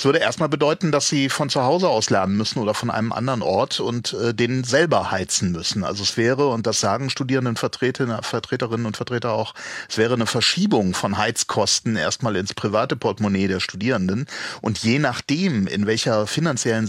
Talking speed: 185 wpm